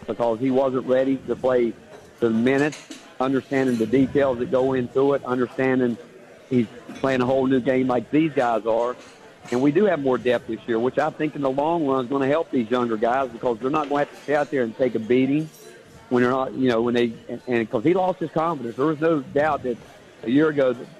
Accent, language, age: American, English, 50-69